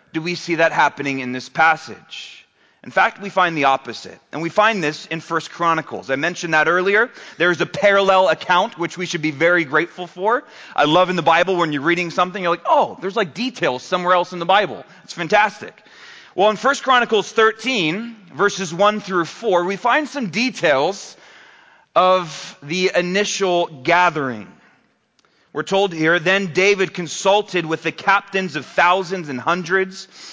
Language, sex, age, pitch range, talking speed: English, male, 30-49, 170-220 Hz, 175 wpm